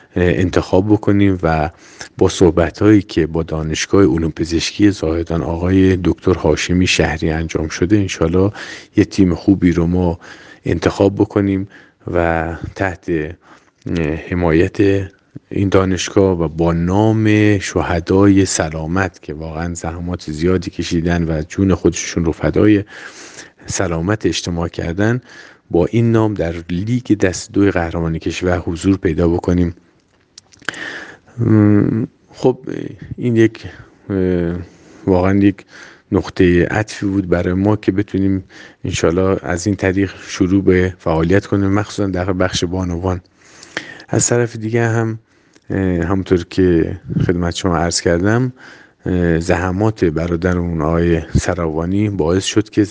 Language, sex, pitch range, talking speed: Persian, male, 85-100 Hz, 115 wpm